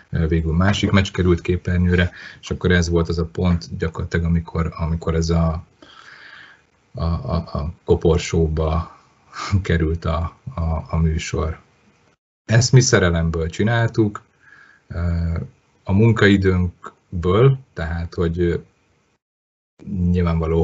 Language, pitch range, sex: Hungarian, 85-100 Hz, male